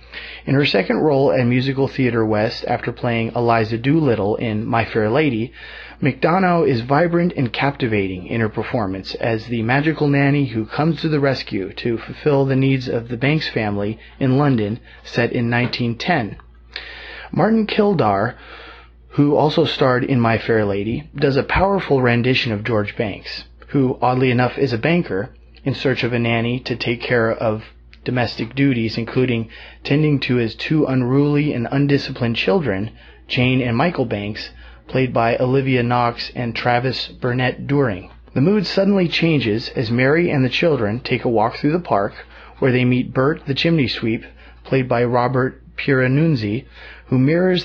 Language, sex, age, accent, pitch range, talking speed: English, male, 30-49, American, 115-140 Hz, 160 wpm